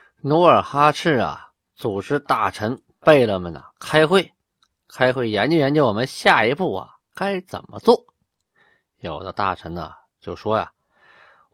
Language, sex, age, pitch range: Chinese, male, 20-39, 95-140 Hz